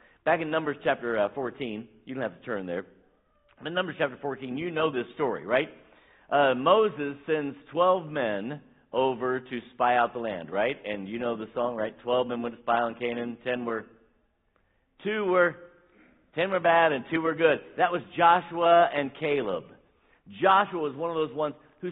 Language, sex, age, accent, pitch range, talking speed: English, male, 50-69, American, 120-170 Hz, 180 wpm